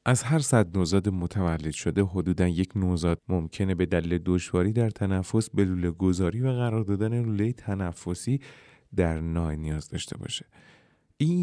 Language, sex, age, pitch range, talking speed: Persian, male, 30-49, 90-115 Hz, 150 wpm